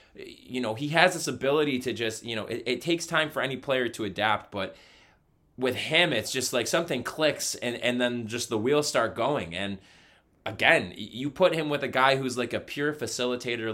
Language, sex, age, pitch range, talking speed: English, male, 20-39, 110-145 Hz, 210 wpm